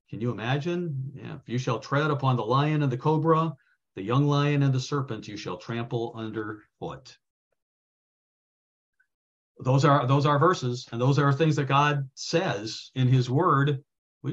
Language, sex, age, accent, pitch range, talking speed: English, male, 50-69, American, 115-140 Hz, 170 wpm